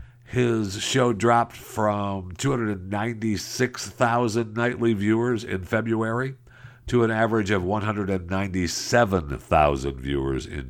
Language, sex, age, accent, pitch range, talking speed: English, male, 60-79, American, 80-120 Hz, 90 wpm